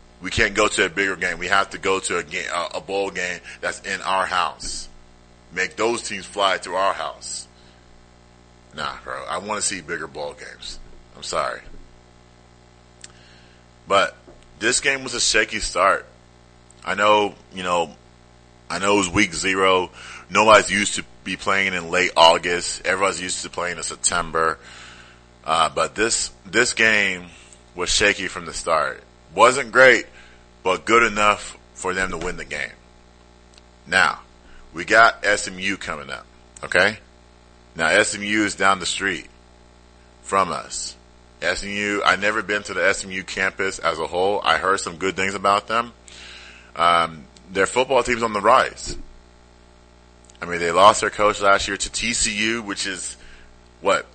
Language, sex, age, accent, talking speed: English, male, 30-49, American, 155 wpm